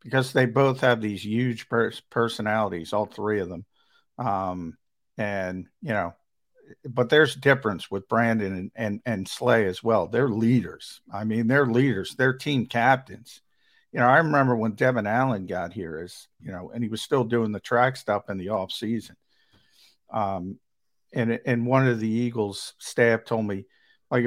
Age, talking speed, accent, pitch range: 50-69, 165 wpm, American, 110-130 Hz